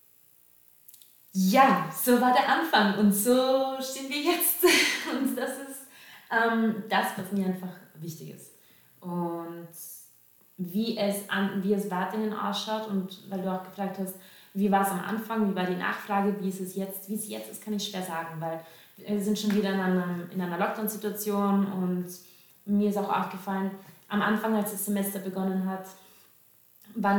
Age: 20-39